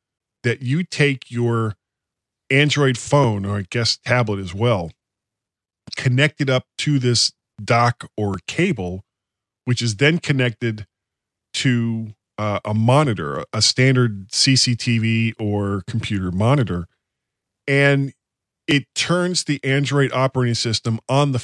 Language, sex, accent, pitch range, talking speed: English, male, American, 105-140 Hz, 120 wpm